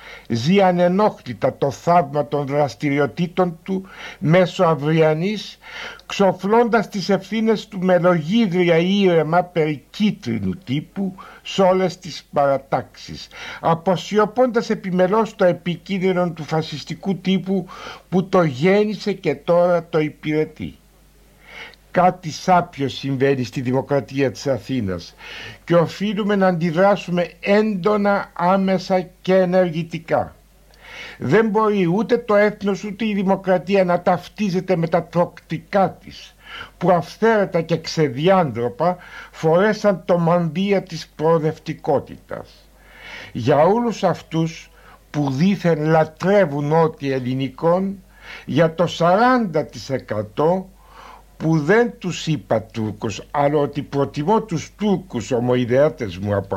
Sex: male